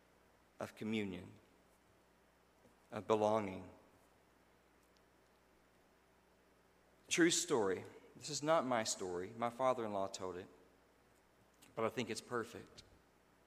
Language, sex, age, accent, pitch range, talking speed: English, male, 50-69, American, 110-140 Hz, 90 wpm